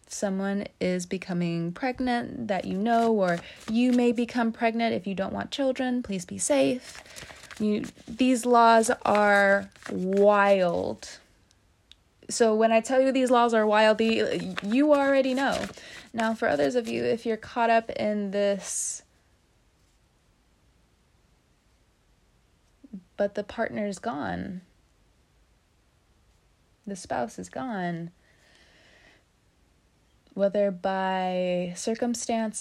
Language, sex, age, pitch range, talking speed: English, female, 20-39, 185-230 Hz, 110 wpm